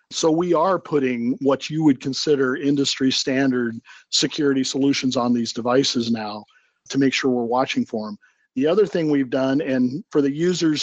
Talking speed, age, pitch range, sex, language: 175 wpm, 50-69, 125-150 Hz, male, English